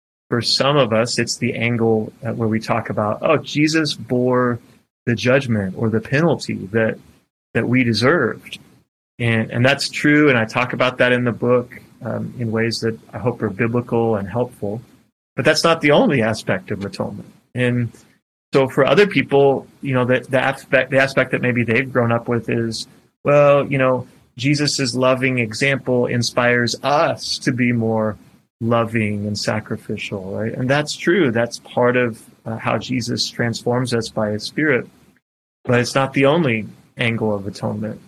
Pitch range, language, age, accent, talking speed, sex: 115-130 Hz, English, 30-49, American, 170 wpm, male